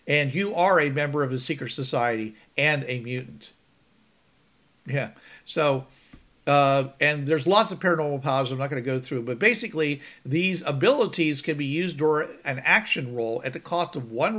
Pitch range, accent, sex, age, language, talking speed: 125-160 Hz, American, male, 50-69, English, 180 wpm